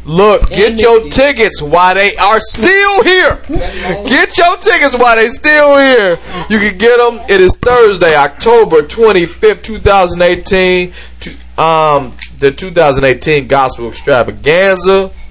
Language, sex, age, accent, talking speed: English, male, 30-49, American, 125 wpm